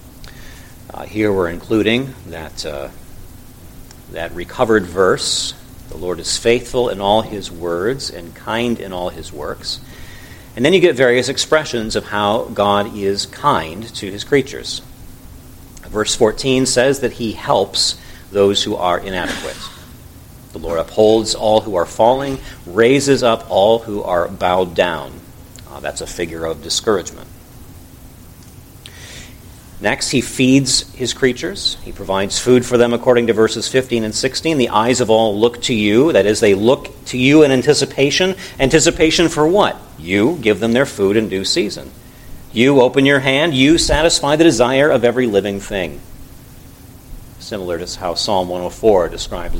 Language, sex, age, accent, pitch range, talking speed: English, male, 40-59, American, 95-130 Hz, 150 wpm